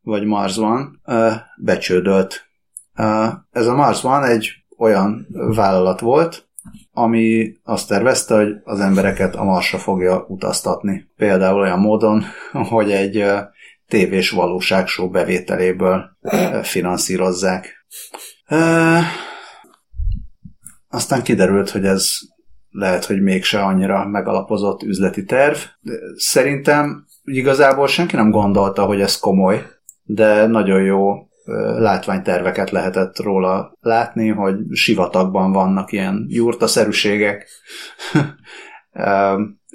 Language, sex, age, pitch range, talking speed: Hungarian, male, 30-49, 95-110 Hz, 100 wpm